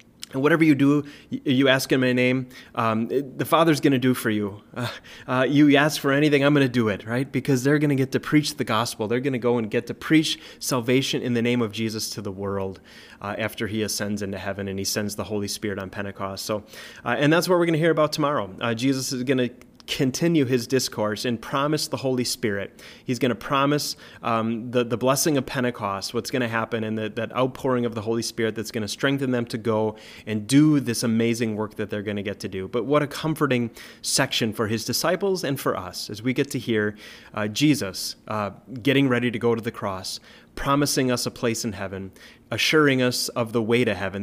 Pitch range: 110-135 Hz